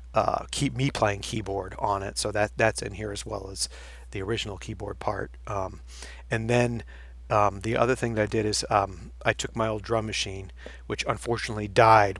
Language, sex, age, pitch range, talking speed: English, male, 40-59, 100-110 Hz, 195 wpm